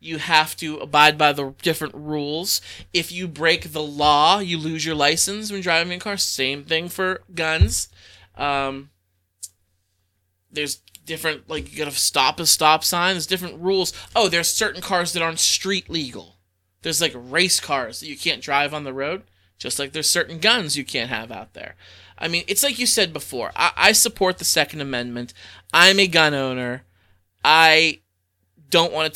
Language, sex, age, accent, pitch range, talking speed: English, male, 20-39, American, 130-190 Hz, 180 wpm